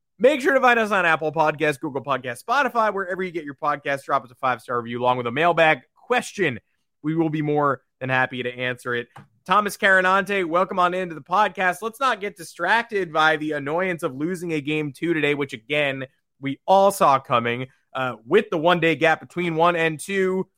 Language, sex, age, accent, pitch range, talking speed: English, male, 20-39, American, 140-175 Hz, 205 wpm